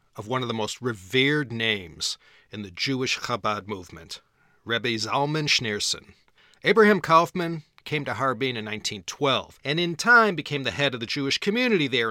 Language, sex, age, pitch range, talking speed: English, male, 40-59, 110-145 Hz, 165 wpm